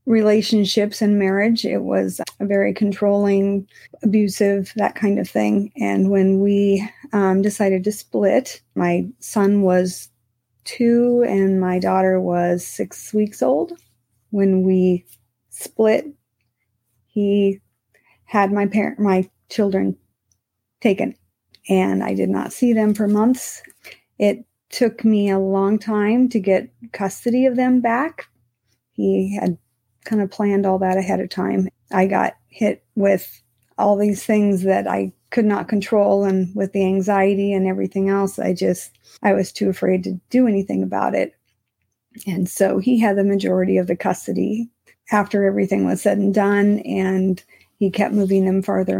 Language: English